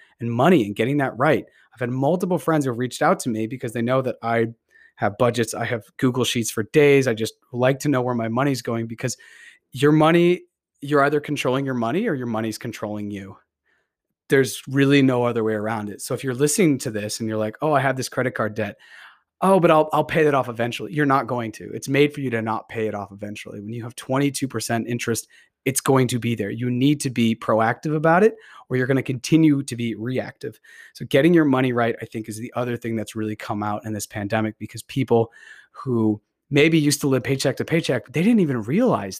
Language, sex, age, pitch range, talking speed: English, male, 30-49, 110-145 Hz, 235 wpm